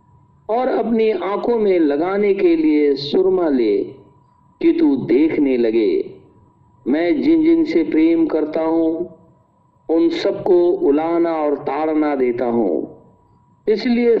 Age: 60-79